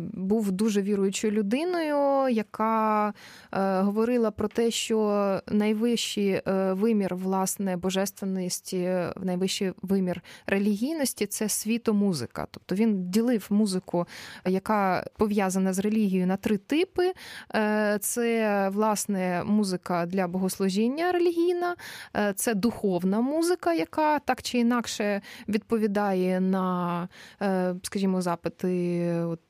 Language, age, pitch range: Ukrainian, 20-39, 190-235 Hz